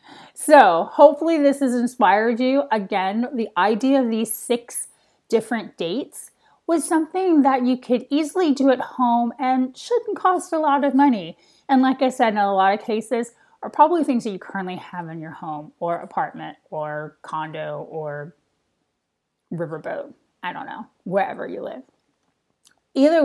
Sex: female